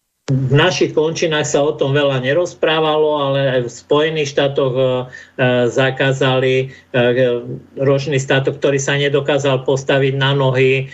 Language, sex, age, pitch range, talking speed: Slovak, male, 50-69, 130-155 Hz, 130 wpm